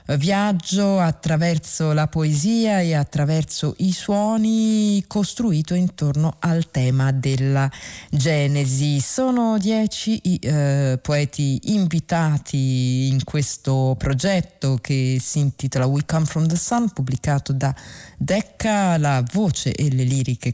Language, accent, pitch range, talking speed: Italian, native, 140-180 Hz, 115 wpm